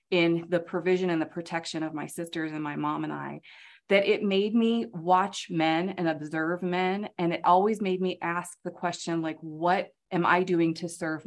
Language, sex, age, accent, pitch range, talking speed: English, female, 30-49, American, 165-190 Hz, 200 wpm